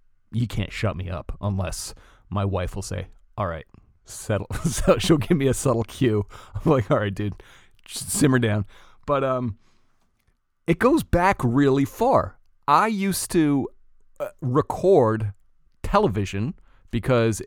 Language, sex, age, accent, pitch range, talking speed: English, male, 30-49, American, 100-130 Hz, 140 wpm